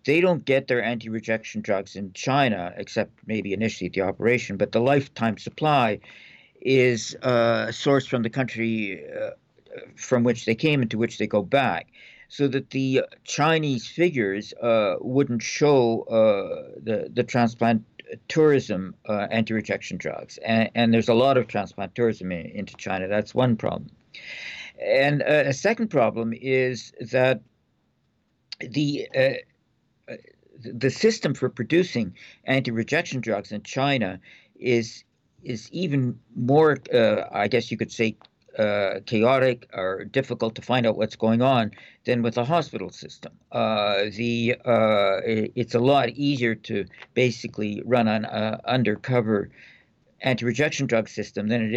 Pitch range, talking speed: 110-135 Hz, 145 wpm